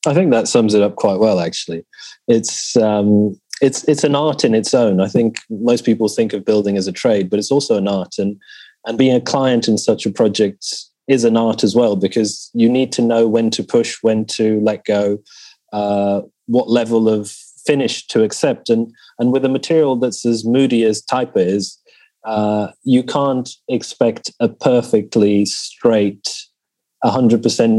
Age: 30-49